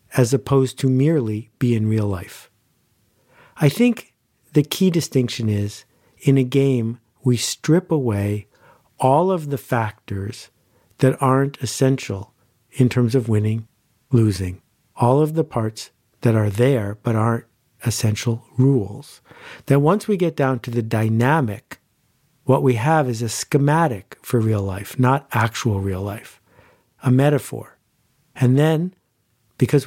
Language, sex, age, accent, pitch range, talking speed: English, male, 50-69, American, 110-135 Hz, 140 wpm